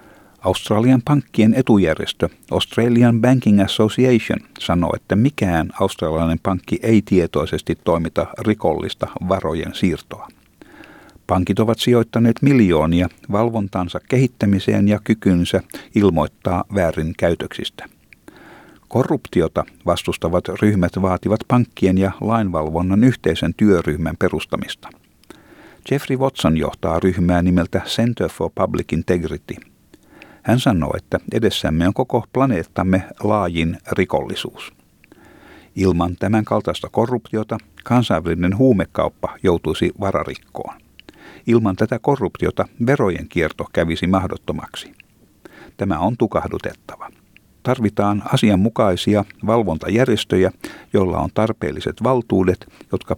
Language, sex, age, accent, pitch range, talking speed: Finnish, male, 50-69, native, 85-115 Hz, 95 wpm